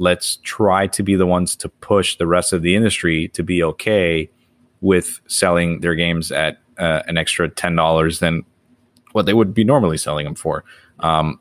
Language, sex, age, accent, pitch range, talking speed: English, male, 20-39, American, 80-90 Hz, 185 wpm